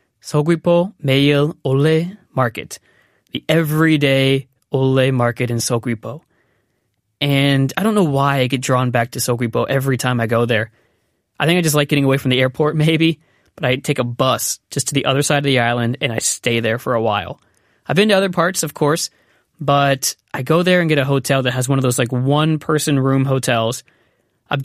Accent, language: American, Korean